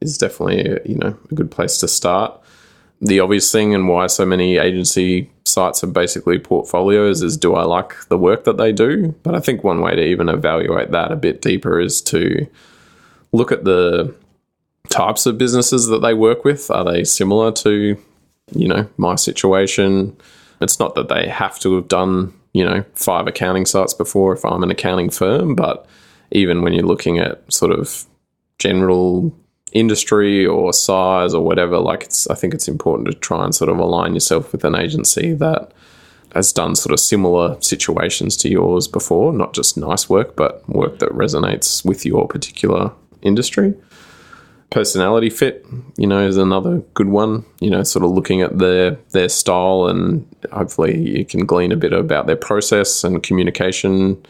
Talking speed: 180 wpm